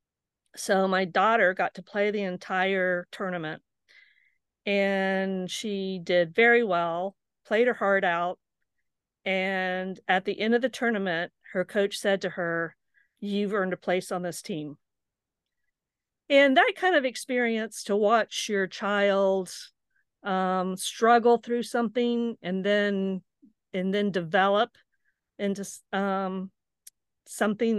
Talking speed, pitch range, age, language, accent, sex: 125 wpm, 185-215 Hz, 50-69, English, American, female